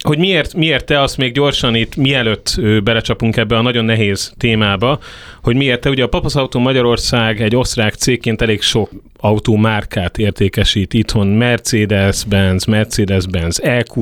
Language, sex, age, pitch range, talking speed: Hungarian, male, 30-49, 105-130 Hz, 155 wpm